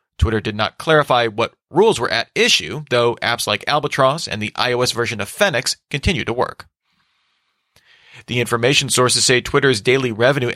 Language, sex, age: English, male, 40-59